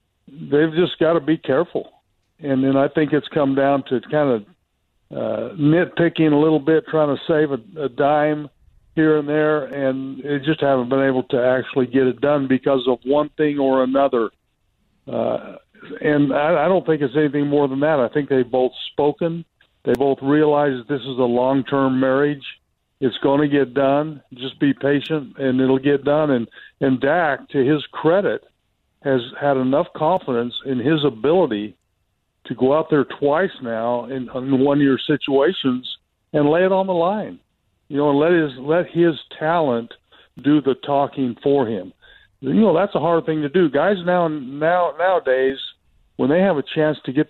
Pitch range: 130-155 Hz